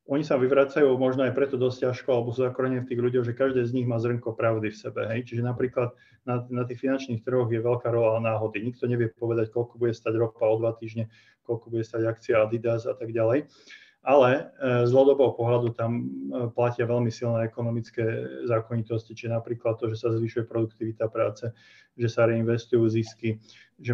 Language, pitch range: Slovak, 115-125 Hz